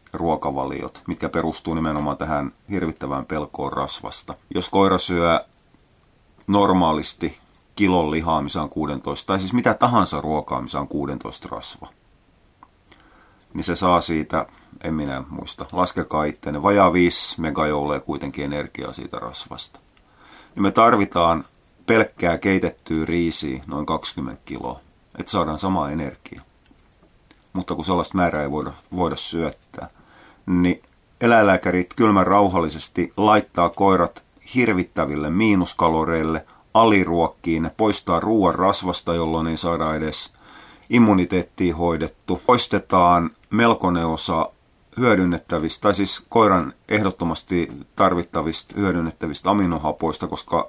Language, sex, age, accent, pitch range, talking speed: Finnish, male, 30-49, native, 80-95 Hz, 110 wpm